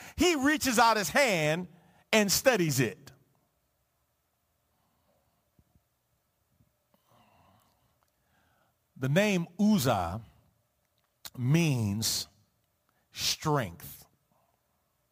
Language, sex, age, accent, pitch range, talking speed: English, male, 50-69, American, 130-215 Hz, 50 wpm